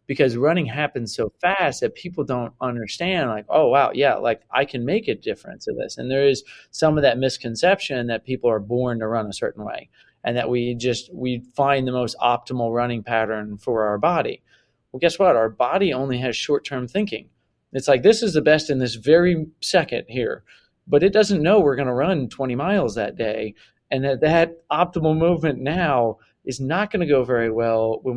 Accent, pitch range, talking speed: American, 115-150 Hz, 205 wpm